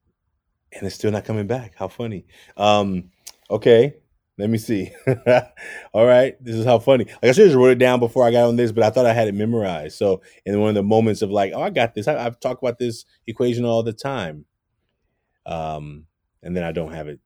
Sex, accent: male, American